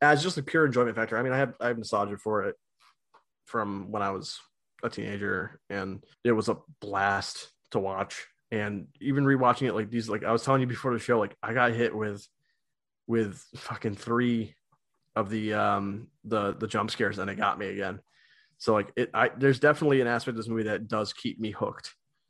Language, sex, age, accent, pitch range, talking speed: English, male, 20-39, American, 105-135 Hz, 210 wpm